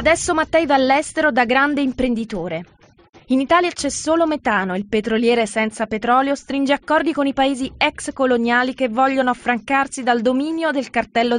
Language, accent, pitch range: Italian, native, 235-285 Hz